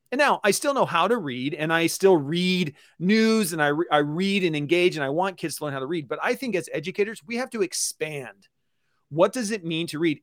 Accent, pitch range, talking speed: American, 155-200 Hz, 260 wpm